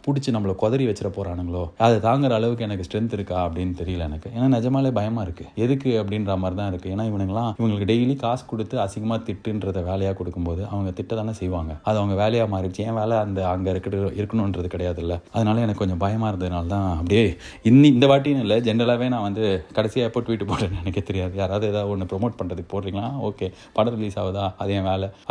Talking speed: 185 wpm